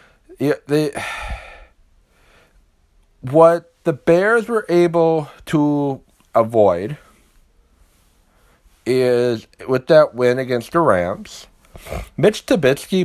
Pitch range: 105-150 Hz